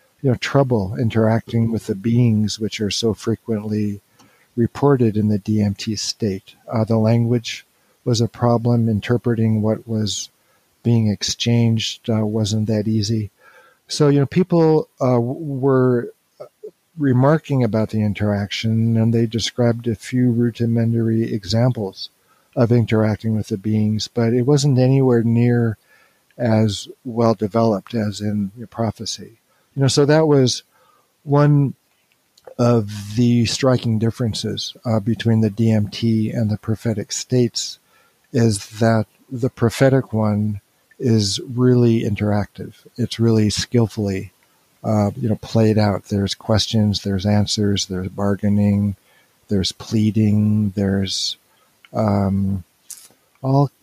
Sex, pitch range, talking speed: male, 105-120 Hz, 120 wpm